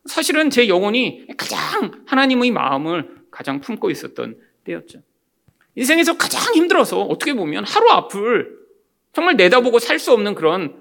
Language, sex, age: Korean, male, 40-59